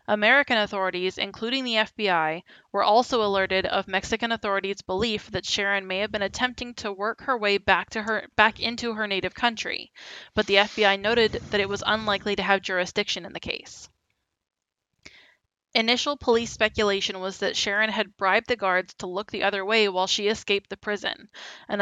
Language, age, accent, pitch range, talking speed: English, 20-39, American, 195-225 Hz, 175 wpm